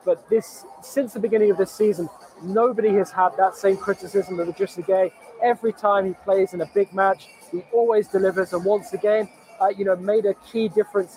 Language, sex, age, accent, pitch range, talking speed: English, male, 20-39, British, 185-215 Hz, 205 wpm